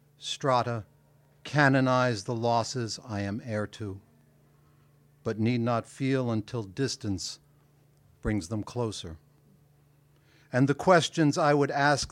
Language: English